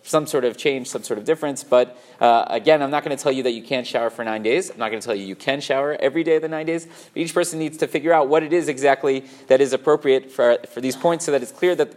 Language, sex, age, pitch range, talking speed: English, male, 30-49, 125-155 Hz, 310 wpm